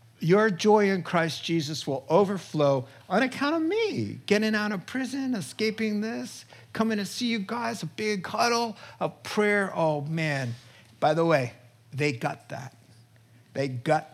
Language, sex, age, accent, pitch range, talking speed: English, male, 50-69, American, 125-205 Hz, 155 wpm